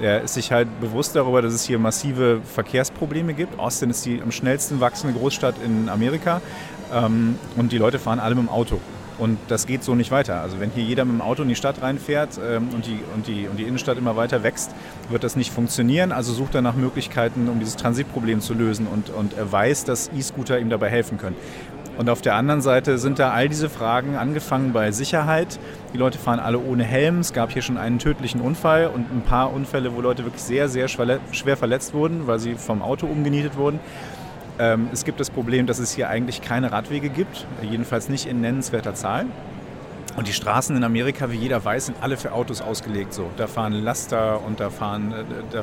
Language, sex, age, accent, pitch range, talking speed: German, male, 40-59, German, 115-135 Hz, 210 wpm